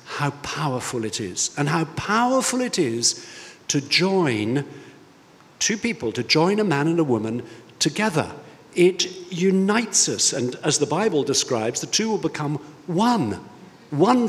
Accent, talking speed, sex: British, 145 wpm, male